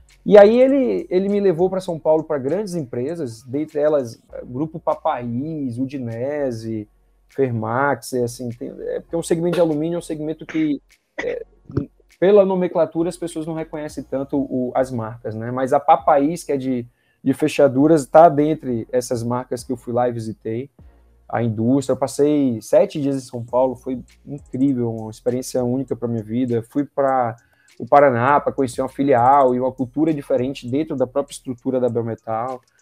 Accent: Brazilian